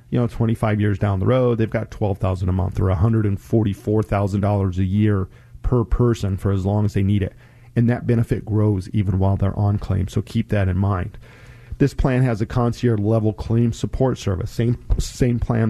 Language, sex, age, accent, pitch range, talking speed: English, male, 40-59, American, 105-120 Hz, 235 wpm